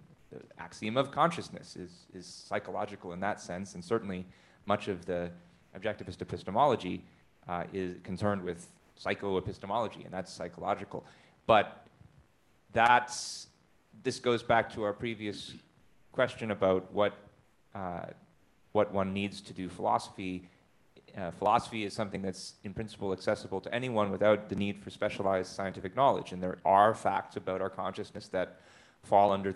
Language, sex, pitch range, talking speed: English, male, 90-105 Hz, 140 wpm